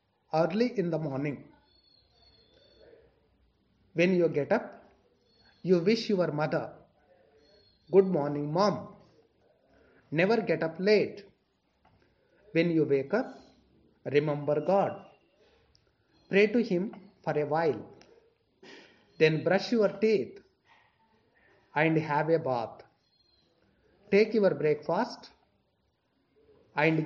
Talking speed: 95 wpm